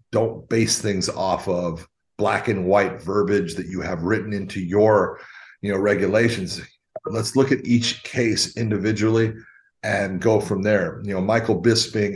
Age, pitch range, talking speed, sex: 40-59, 100-115 Hz, 160 wpm, male